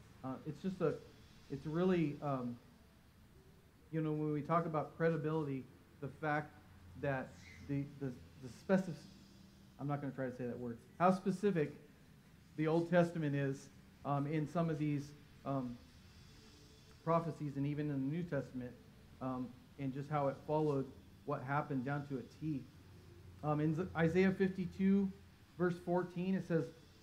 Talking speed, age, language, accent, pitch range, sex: 155 wpm, 40-59, English, American, 130-160 Hz, male